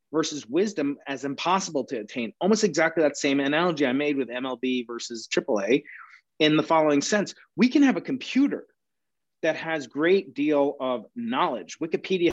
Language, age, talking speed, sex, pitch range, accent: English, 30-49, 160 wpm, male, 140-190 Hz, American